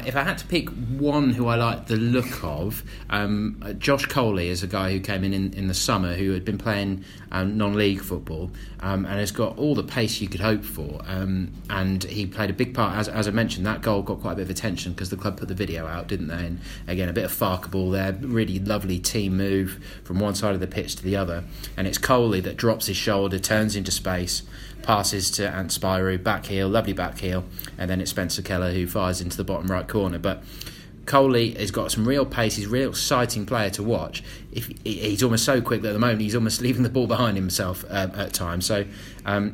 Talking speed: 235 wpm